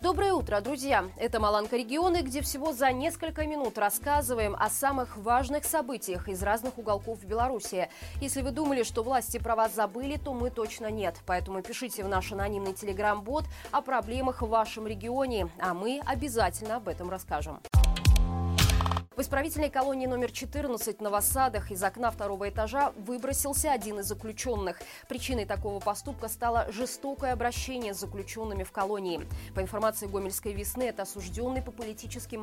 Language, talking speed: Russian, 150 wpm